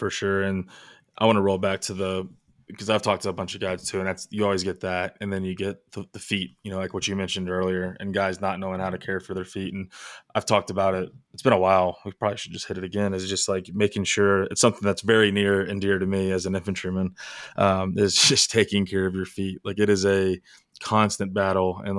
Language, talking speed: English, 265 wpm